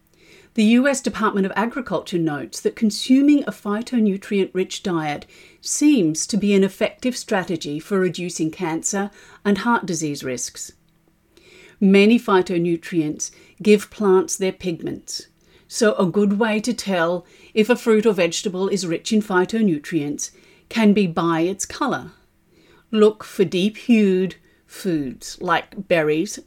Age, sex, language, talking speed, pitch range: 50-69, female, English, 125 wpm, 165-210 Hz